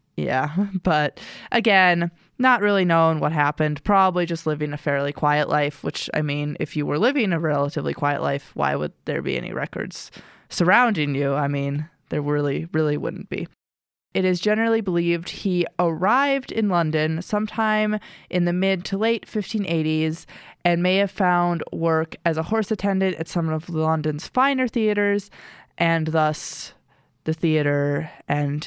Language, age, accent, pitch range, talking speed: English, 20-39, American, 155-200 Hz, 160 wpm